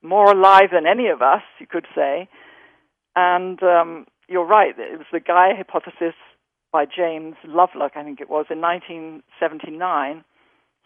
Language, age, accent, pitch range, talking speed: English, 50-69, British, 170-225 Hz, 150 wpm